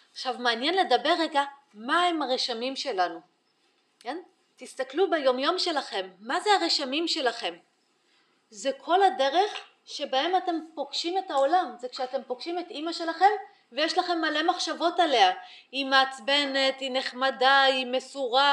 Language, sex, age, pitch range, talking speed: Hebrew, female, 30-49, 255-355 Hz, 130 wpm